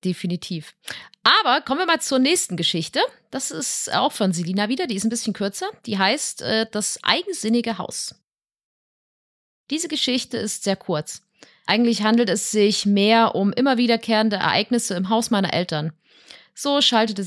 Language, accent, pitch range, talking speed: German, German, 185-235 Hz, 155 wpm